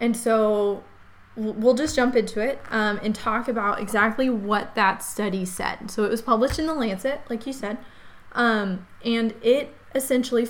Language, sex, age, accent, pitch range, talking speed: English, female, 20-39, American, 200-235 Hz, 170 wpm